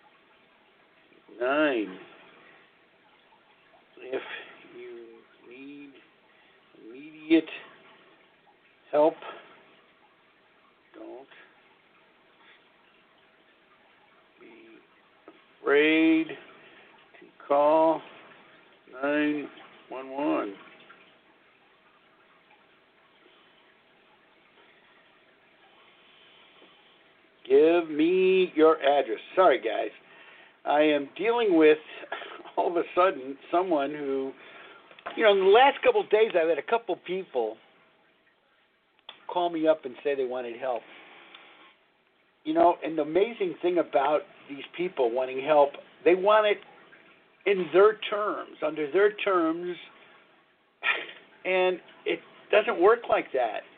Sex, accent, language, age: male, American, English, 60-79